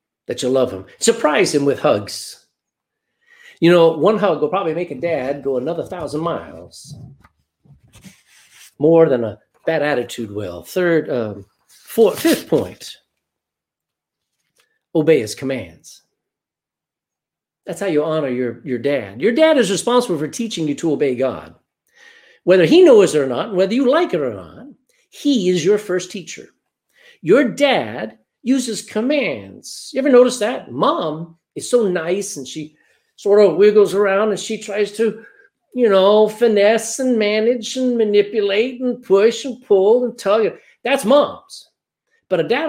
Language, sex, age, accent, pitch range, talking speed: English, male, 50-69, American, 160-250 Hz, 155 wpm